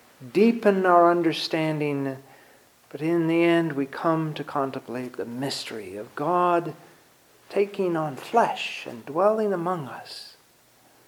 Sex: male